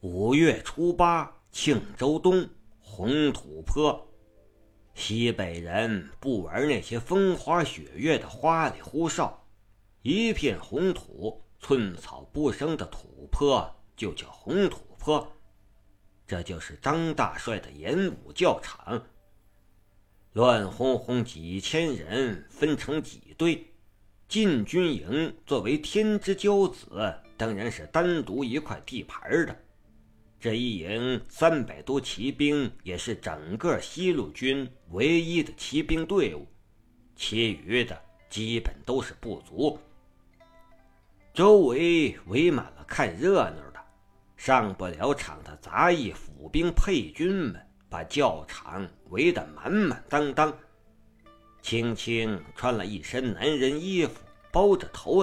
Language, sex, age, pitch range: Chinese, male, 50-69, 100-160 Hz